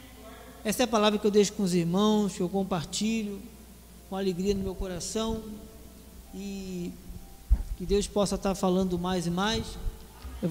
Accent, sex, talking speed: Brazilian, male, 160 wpm